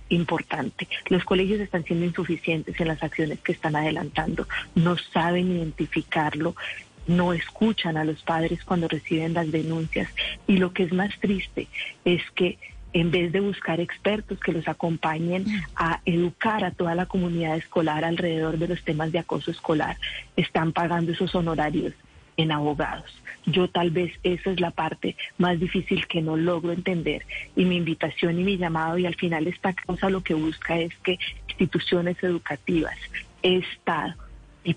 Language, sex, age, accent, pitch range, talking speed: Spanish, female, 40-59, Colombian, 165-185 Hz, 160 wpm